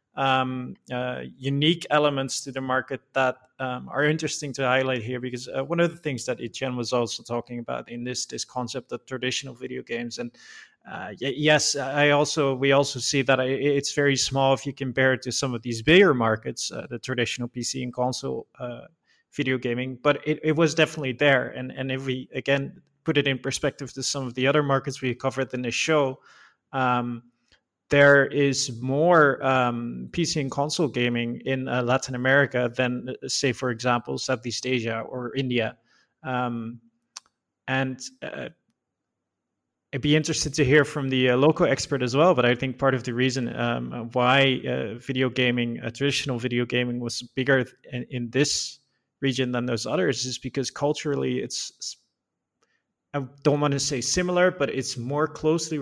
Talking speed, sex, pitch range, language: 180 wpm, male, 125-140 Hz, English